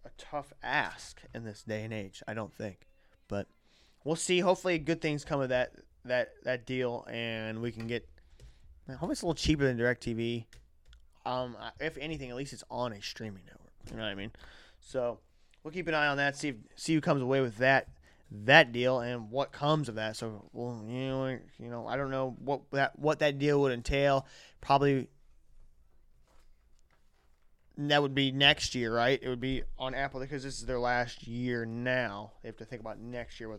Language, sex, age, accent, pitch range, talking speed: English, male, 20-39, American, 110-150 Hz, 205 wpm